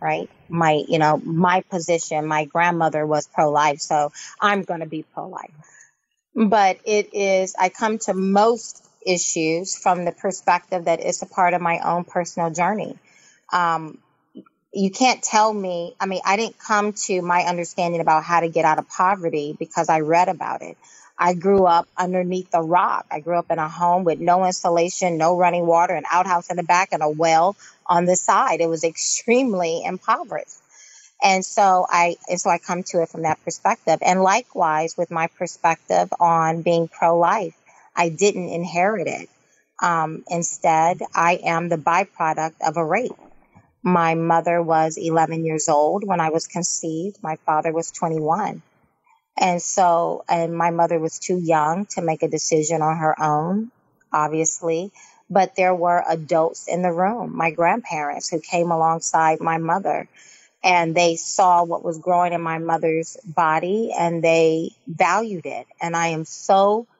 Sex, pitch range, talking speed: female, 165-190 Hz, 170 wpm